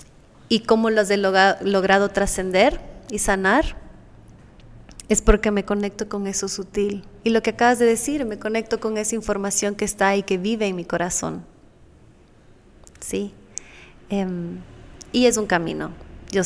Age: 30-49